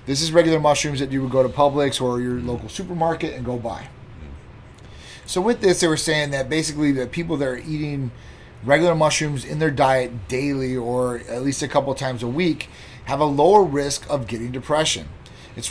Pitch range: 125-150 Hz